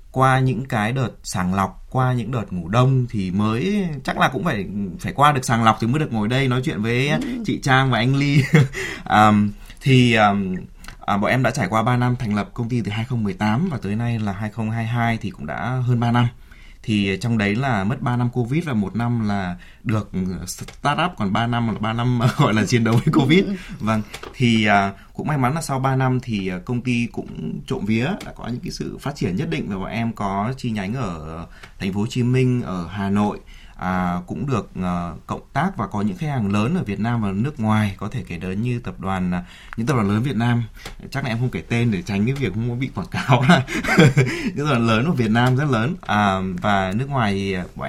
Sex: male